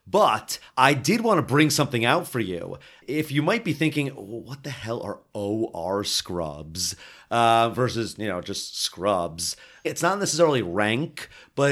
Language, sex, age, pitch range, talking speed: English, male, 30-49, 105-140 Hz, 170 wpm